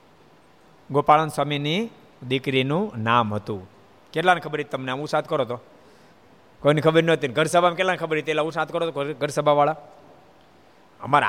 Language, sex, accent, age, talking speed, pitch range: Gujarati, male, native, 50-69, 140 wpm, 140-205 Hz